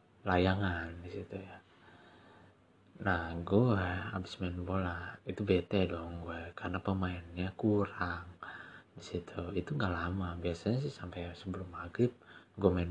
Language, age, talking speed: Indonesian, 20-39, 130 wpm